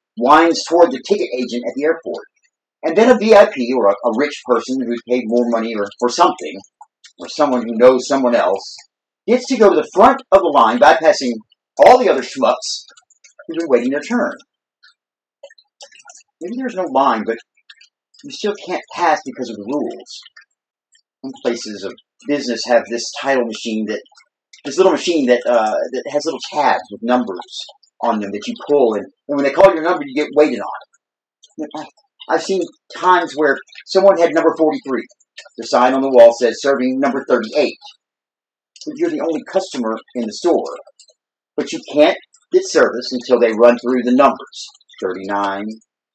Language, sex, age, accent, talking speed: English, male, 40-59, American, 180 wpm